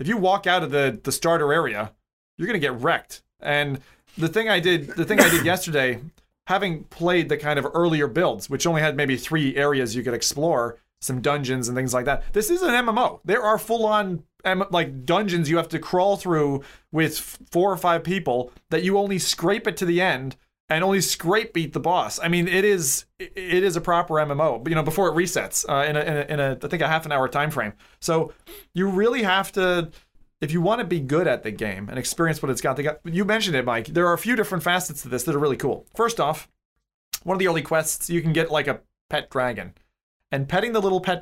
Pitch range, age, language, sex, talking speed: 135-180 Hz, 30-49, English, male, 240 wpm